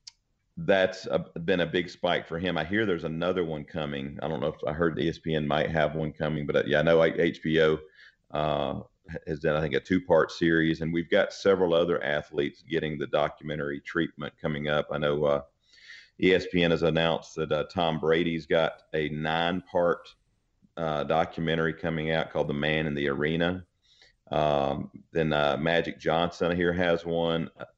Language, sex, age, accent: English, male, 40-59, American